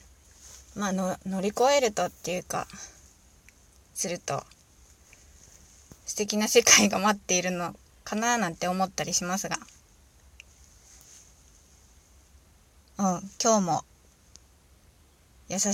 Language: Japanese